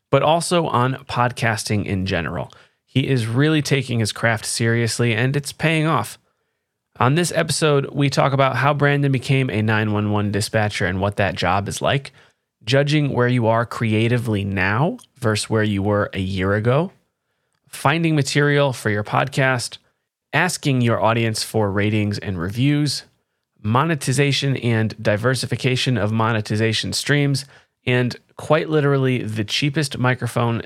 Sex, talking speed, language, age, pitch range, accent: male, 140 wpm, English, 30-49, 110-140 Hz, American